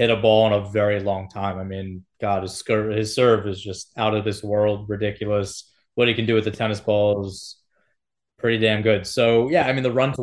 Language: English